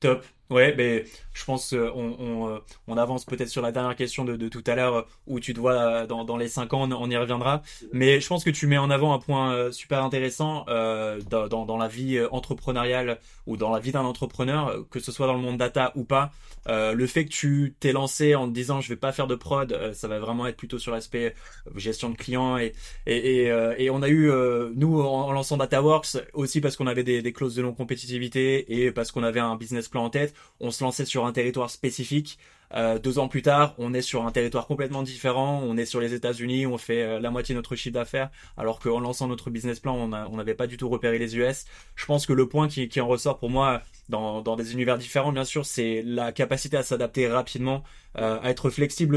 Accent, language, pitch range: French, English, 120-135 Hz